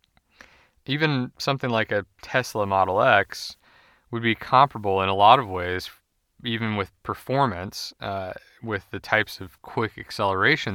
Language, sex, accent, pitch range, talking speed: English, male, American, 100-120 Hz, 140 wpm